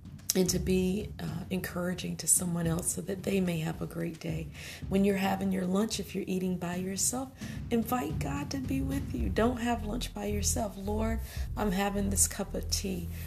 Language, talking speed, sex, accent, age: English, 200 wpm, female, American, 40-59